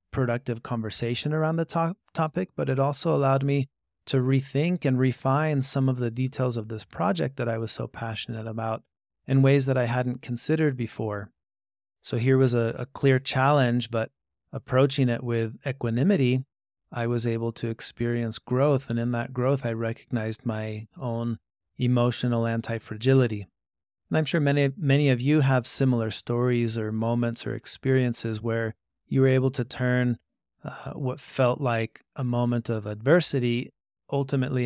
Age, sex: 30-49, male